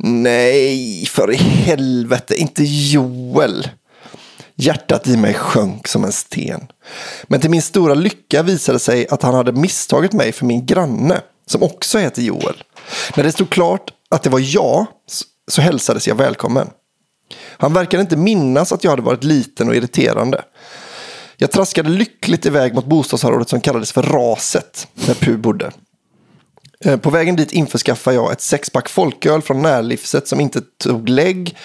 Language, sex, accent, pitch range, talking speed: English, male, Swedish, 125-170 Hz, 155 wpm